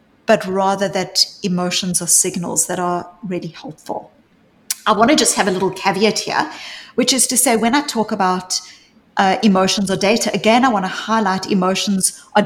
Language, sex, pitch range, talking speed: English, female, 185-240 Hz, 185 wpm